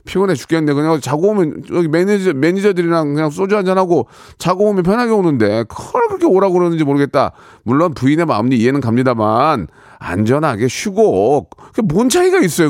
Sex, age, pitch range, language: male, 40-59, 130-205 Hz, Korean